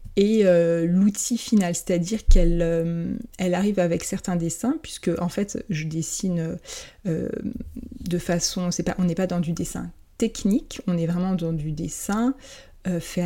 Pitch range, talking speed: 170-210 Hz, 150 wpm